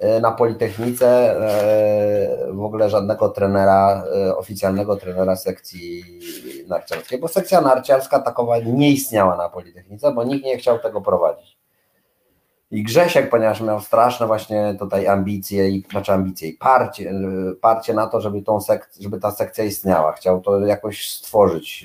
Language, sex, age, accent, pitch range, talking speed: Polish, male, 30-49, native, 95-115 Hz, 140 wpm